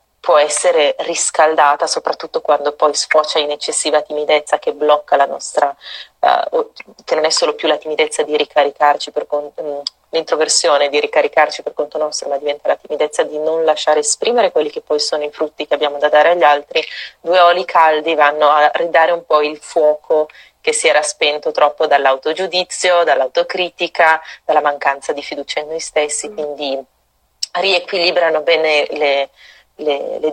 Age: 30-49